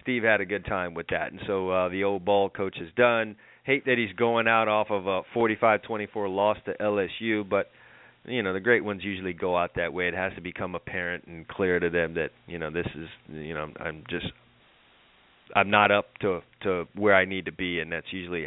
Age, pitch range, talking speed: 30-49, 95-115 Hz, 225 wpm